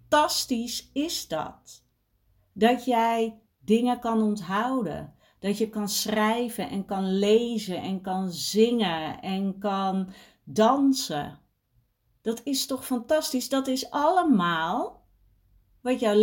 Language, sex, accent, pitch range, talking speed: Dutch, female, Dutch, 160-230 Hz, 110 wpm